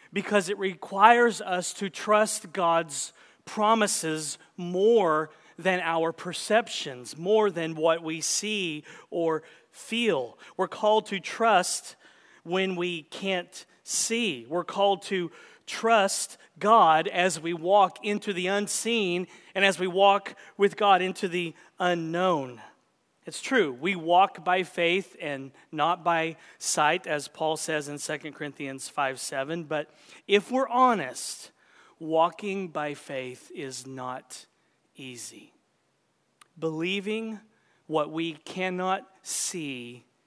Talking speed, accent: 120 wpm, American